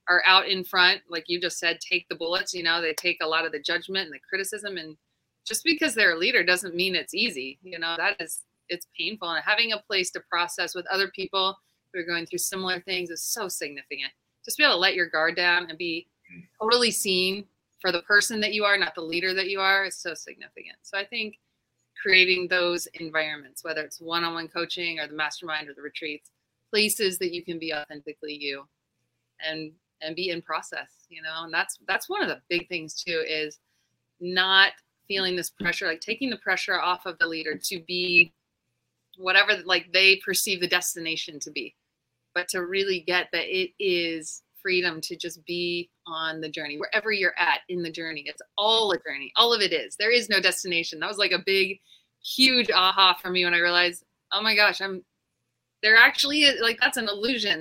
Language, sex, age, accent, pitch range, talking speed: English, female, 30-49, American, 165-195 Hz, 210 wpm